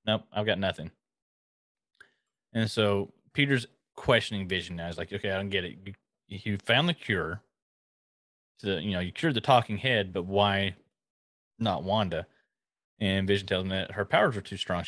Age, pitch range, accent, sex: 30-49, 95-110 Hz, American, male